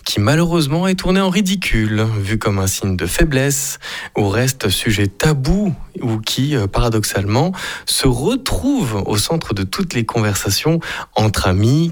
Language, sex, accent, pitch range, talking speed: French, male, French, 105-160 Hz, 145 wpm